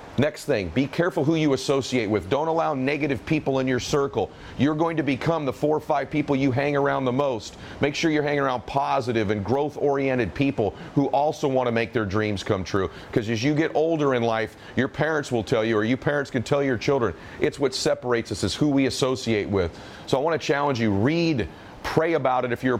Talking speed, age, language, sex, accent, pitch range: 230 wpm, 40-59, English, male, American, 125-150 Hz